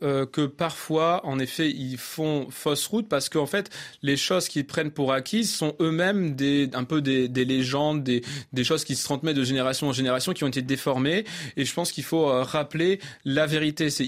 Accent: French